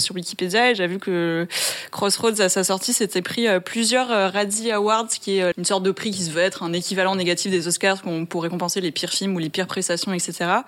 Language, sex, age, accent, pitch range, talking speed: French, female, 20-39, French, 185-215 Hz, 225 wpm